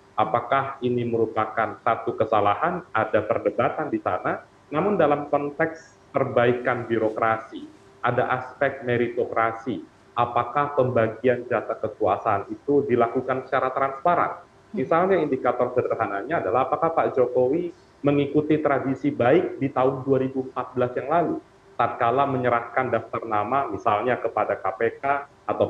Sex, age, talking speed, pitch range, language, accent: male, 30-49, 110 wpm, 120-155 Hz, Indonesian, native